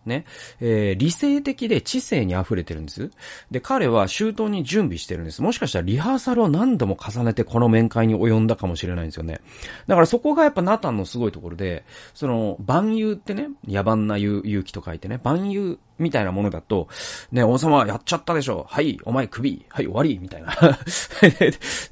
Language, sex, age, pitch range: Japanese, male, 30-49, 100-150 Hz